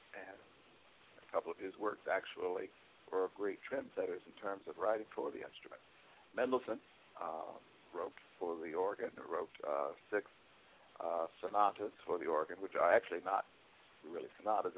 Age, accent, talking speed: 60-79, American, 150 wpm